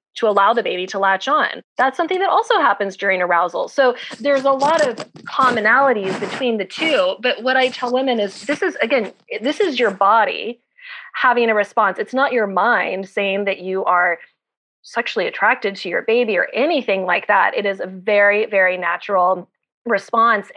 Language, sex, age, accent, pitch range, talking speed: English, female, 20-39, American, 195-280 Hz, 185 wpm